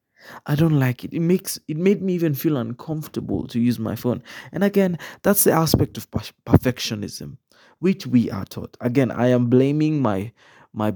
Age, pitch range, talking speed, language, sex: 20-39, 120-155 Hz, 185 wpm, English, male